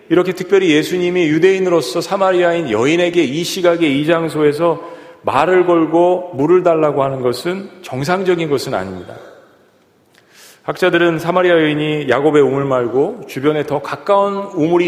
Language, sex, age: Korean, male, 40-59